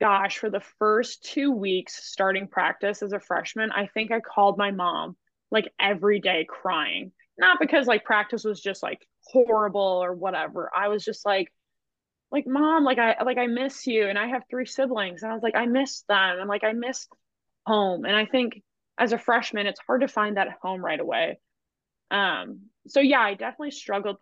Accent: American